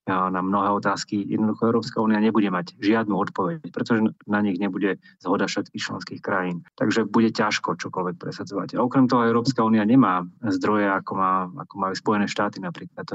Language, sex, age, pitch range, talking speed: Slovak, male, 30-49, 95-110 Hz, 175 wpm